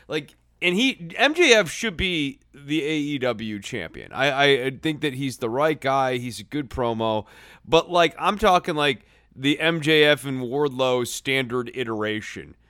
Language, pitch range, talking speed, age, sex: English, 110-145 Hz, 150 wpm, 30-49, male